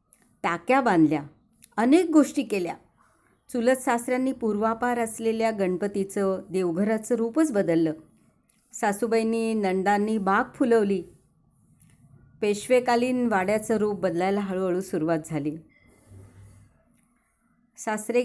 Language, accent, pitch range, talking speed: Hindi, native, 185-245 Hz, 80 wpm